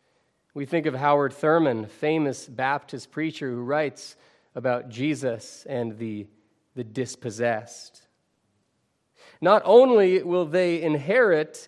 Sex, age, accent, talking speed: male, 30-49, American, 115 wpm